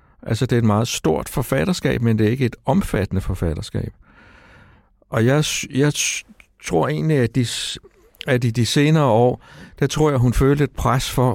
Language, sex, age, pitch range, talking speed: Danish, male, 60-79, 105-130 Hz, 180 wpm